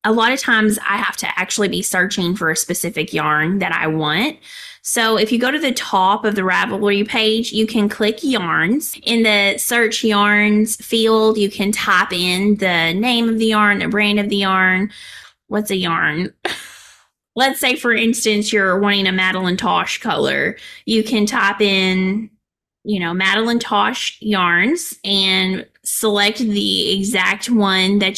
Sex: female